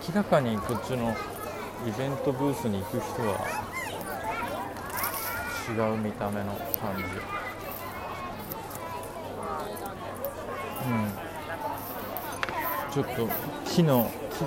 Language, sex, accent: Japanese, male, native